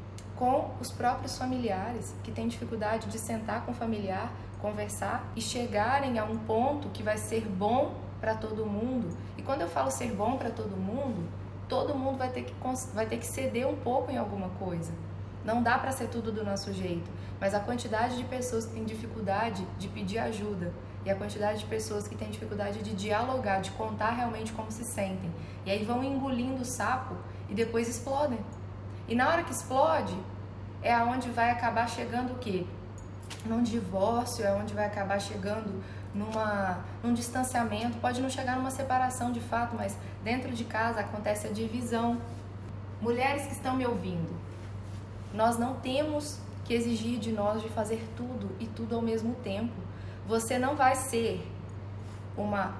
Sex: female